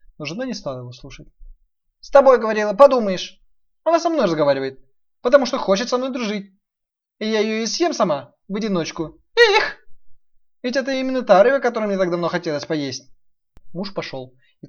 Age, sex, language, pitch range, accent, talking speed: 20-39, male, Russian, 140-200 Hz, native, 180 wpm